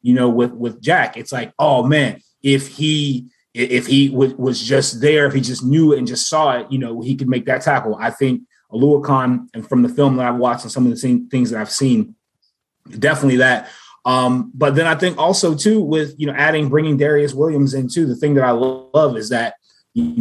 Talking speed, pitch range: 230 wpm, 120-145 Hz